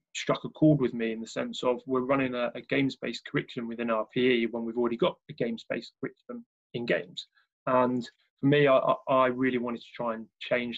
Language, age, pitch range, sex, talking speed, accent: English, 20-39, 120-140 Hz, male, 225 wpm, British